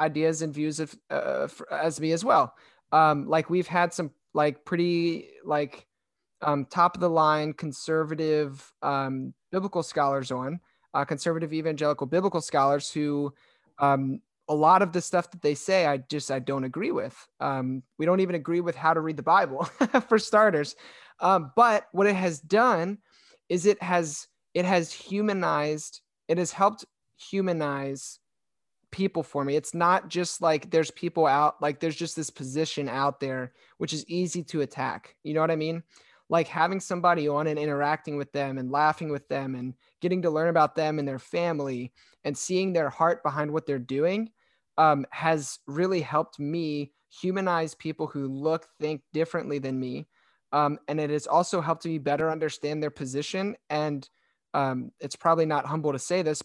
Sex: male